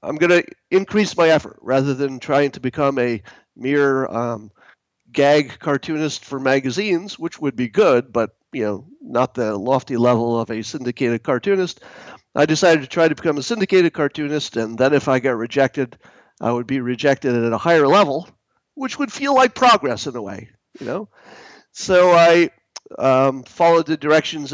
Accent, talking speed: American, 175 wpm